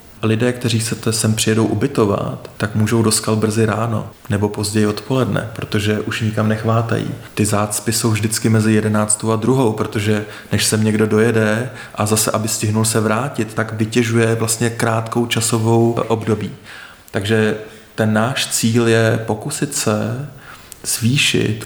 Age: 30-49